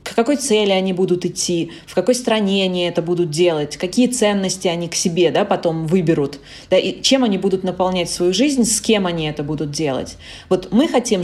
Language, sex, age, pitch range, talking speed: Russian, female, 20-39, 170-220 Hz, 205 wpm